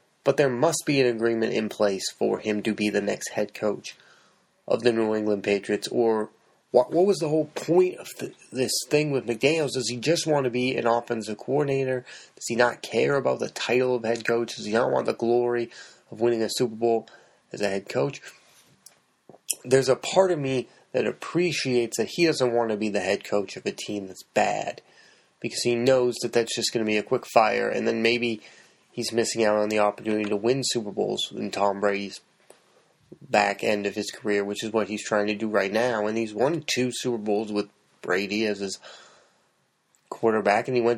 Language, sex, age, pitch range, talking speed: English, male, 30-49, 105-125 Hz, 210 wpm